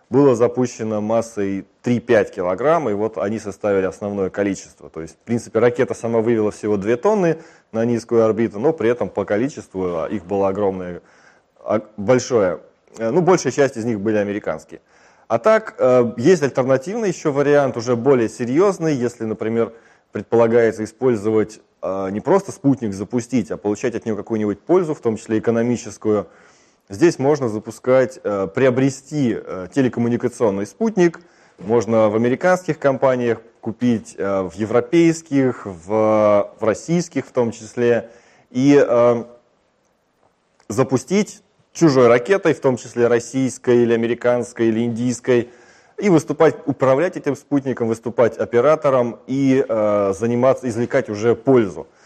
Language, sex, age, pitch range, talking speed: Russian, male, 20-39, 110-140 Hz, 125 wpm